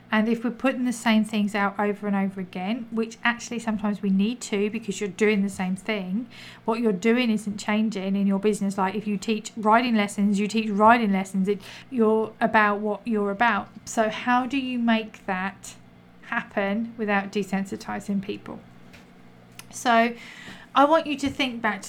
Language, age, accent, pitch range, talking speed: English, 40-59, British, 200-230 Hz, 180 wpm